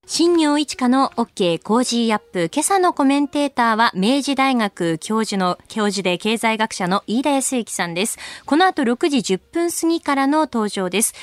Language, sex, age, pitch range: Japanese, female, 20-39, 195-280 Hz